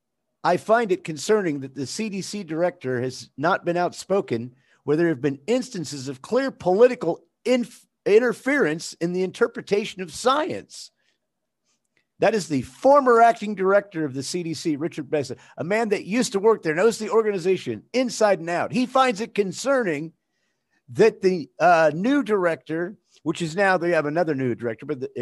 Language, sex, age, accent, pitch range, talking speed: English, male, 50-69, American, 160-230 Hz, 165 wpm